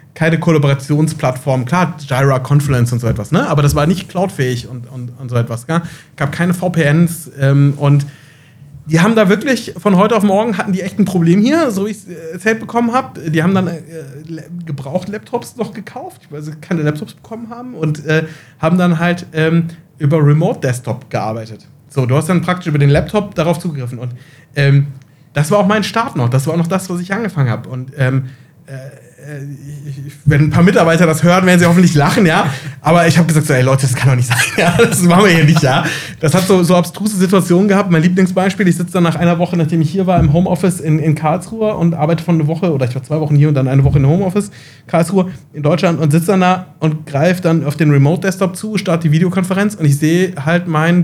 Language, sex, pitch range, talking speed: German, male, 145-180 Hz, 225 wpm